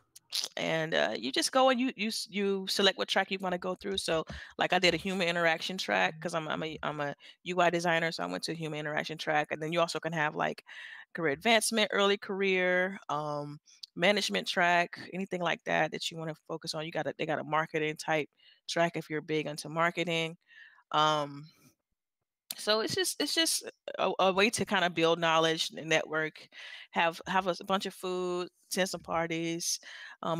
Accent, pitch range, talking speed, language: American, 155-190 Hz, 205 wpm, English